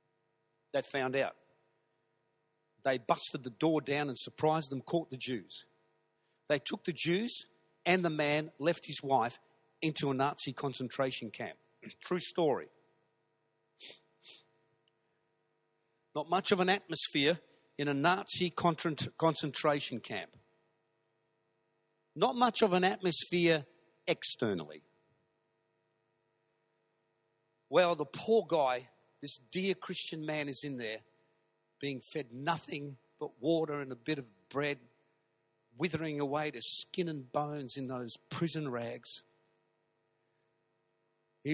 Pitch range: 135-170 Hz